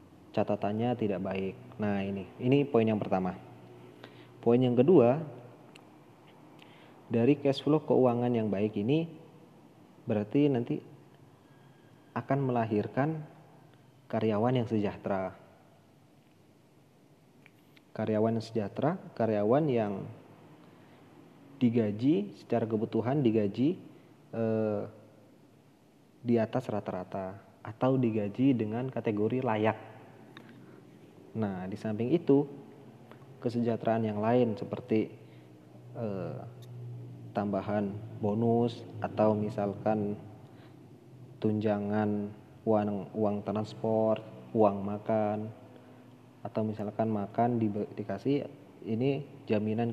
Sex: male